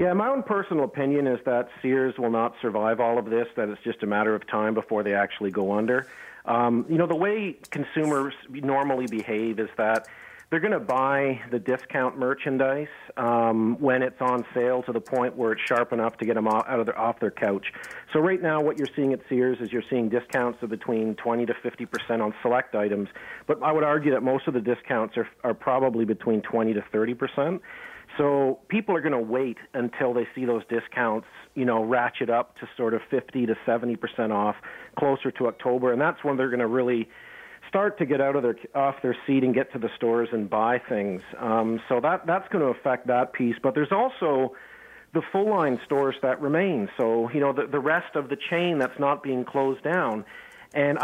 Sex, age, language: male, 50-69, English